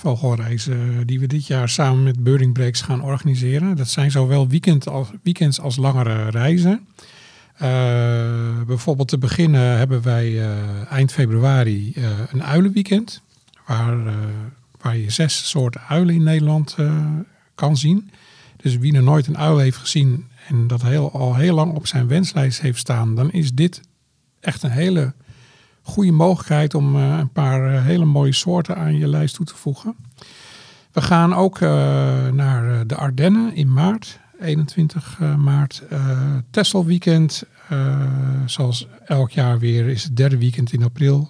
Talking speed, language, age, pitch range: 155 wpm, Dutch, 50-69, 125-155 Hz